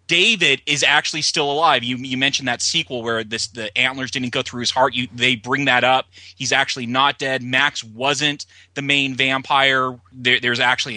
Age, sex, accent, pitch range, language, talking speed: 30-49, male, American, 115-145 Hz, English, 180 wpm